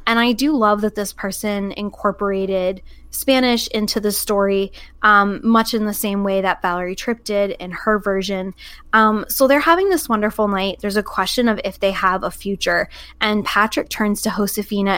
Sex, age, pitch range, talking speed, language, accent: female, 10-29, 200-240 Hz, 185 wpm, English, American